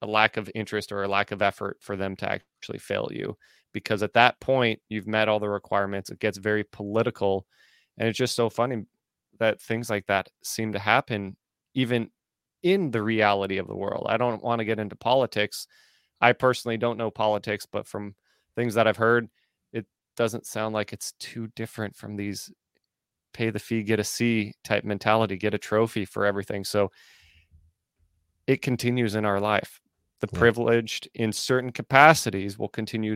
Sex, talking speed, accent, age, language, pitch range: male, 180 wpm, American, 20-39, English, 100-115 Hz